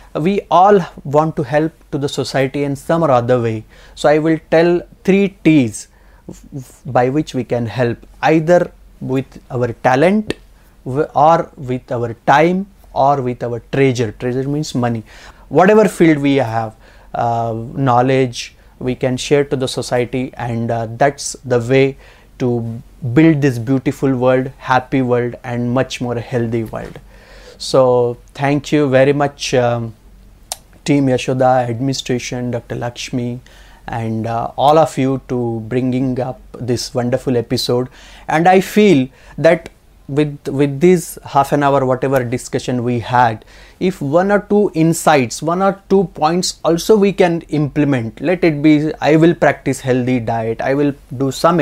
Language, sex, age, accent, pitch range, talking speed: English, male, 30-49, Indian, 120-150 Hz, 150 wpm